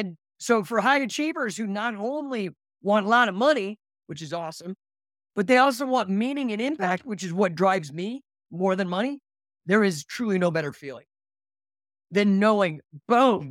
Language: English